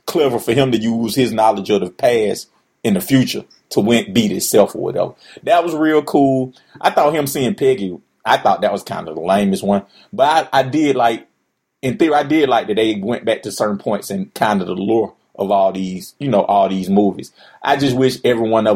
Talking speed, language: 235 wpm, English